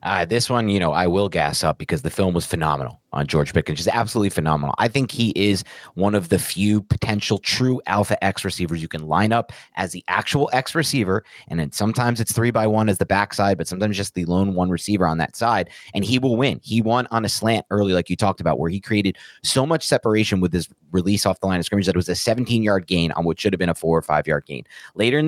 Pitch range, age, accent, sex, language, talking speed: 90-120 Hz, 30-49, American, male, English, 255 wpm